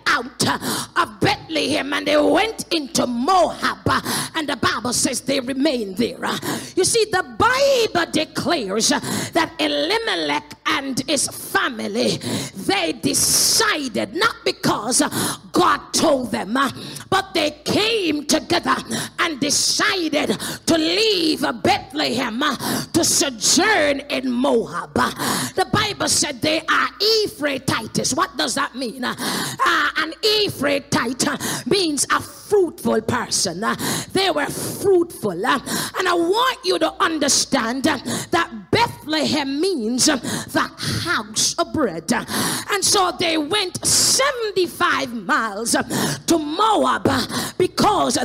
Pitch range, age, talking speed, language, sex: 280-370 Hz, 30-49, 110 wpm, English, female